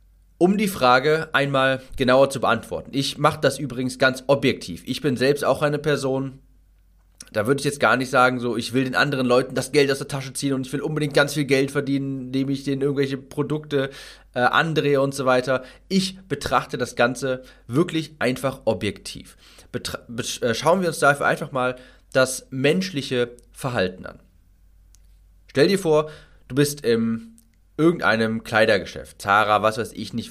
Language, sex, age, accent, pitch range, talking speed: German, male, 30-49, German, 120-150 Hz, 175 wpm